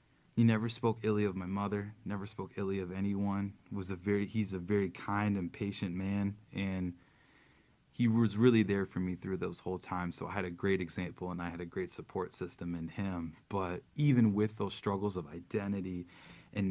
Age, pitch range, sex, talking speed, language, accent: 20-39, 90-110 Hz, male, 200 wpm, English, American